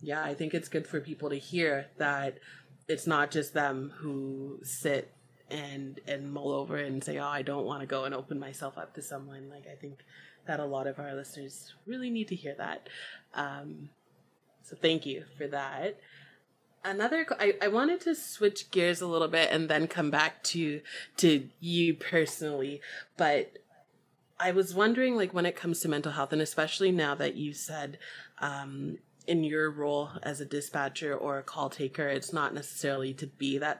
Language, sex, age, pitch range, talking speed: English, female, 30-49, 140-160 Hz, 190 wpm